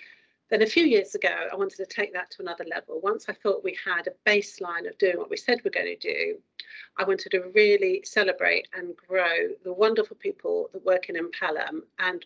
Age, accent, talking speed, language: 40-59, British, 215 wpm, English